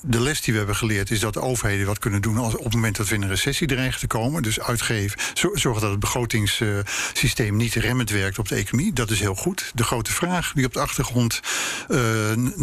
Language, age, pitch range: Dutch, 50-69, 110-130 Hz